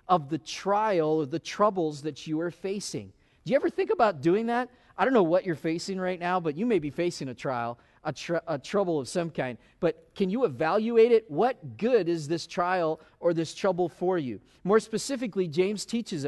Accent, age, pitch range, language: American, 40-59, 165-220 Hz, English